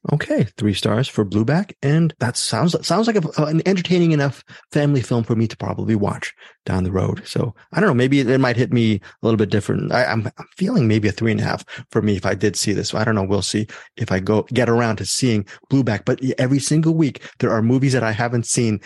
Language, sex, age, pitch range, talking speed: English, male, 30-49, 105-140 Hz, 250 wpm